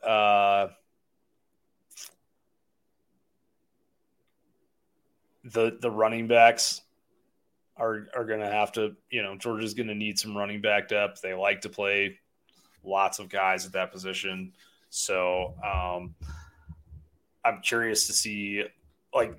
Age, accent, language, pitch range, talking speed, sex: 30-49, American, English, 95-110 Hz, 120 wpm, male